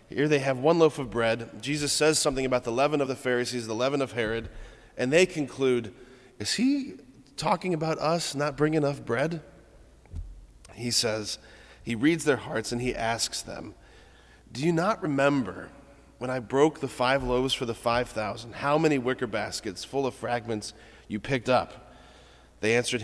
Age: 30-49